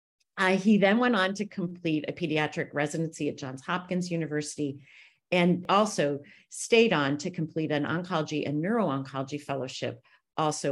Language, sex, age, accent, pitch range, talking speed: English, female, 40-59, American, 140-180 Hz, 145 wpm